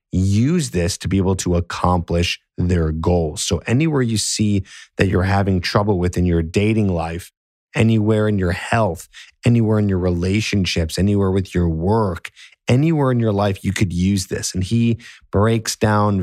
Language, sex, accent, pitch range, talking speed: English, male, American, 90-110 Hz, 170 wpm